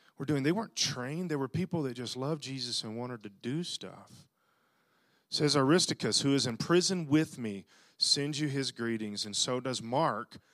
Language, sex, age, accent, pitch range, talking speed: English, male, 40-59, American, 150-220 Hz, 195 wpm